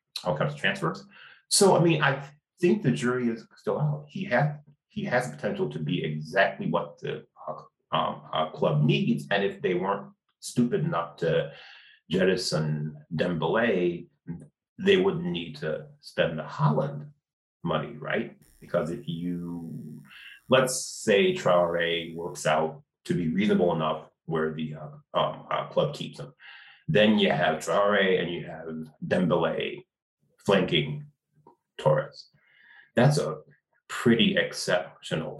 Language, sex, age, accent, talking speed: English, male, 30-49, American, 140 wpm